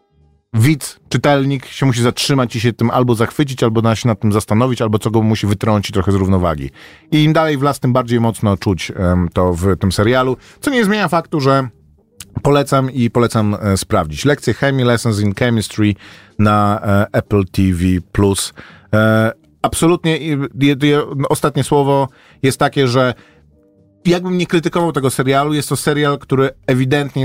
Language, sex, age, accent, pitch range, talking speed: Polish, male, 40-59, native, 110-135 Hz, 165 wpm